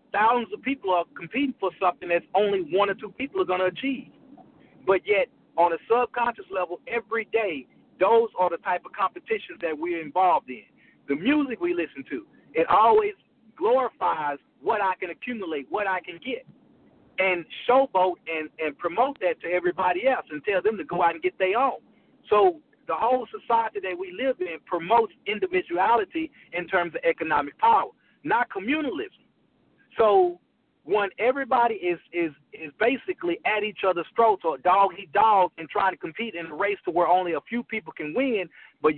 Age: 40-59